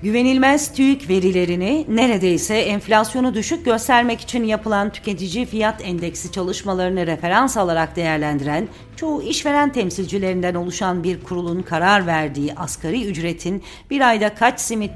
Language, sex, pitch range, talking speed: Turkish, female, 165-215 Hz, 120 wpm